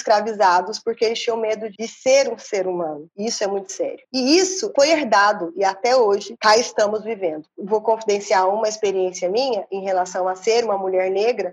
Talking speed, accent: 185 wpm, Brazilian